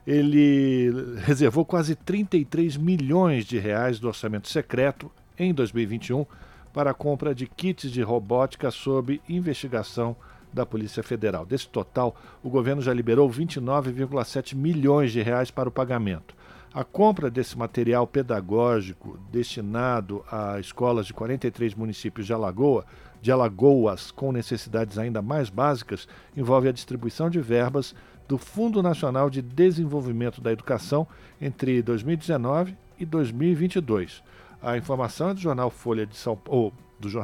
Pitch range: 120-150 Hz